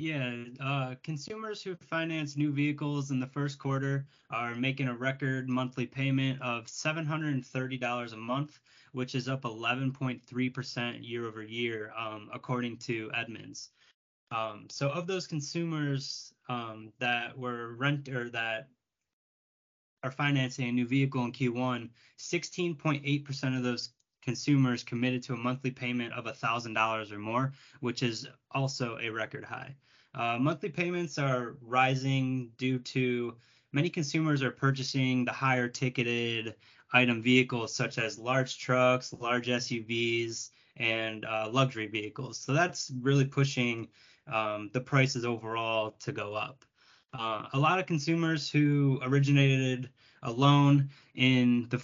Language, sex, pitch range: English, male, 120-140 Hz